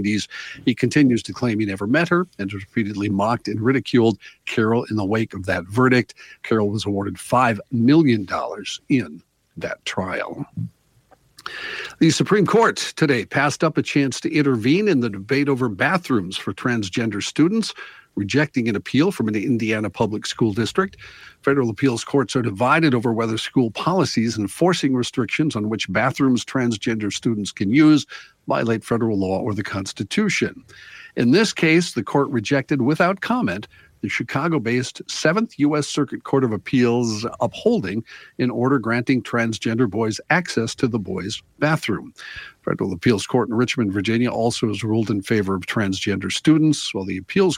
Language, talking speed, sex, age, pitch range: English, 155 wpm, male, 60-79, 105-140 Hz